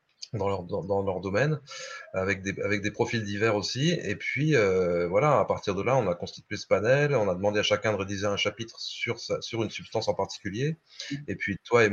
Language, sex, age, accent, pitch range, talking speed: French, male, 30-49, French, 95-140 Hz, 225 wpm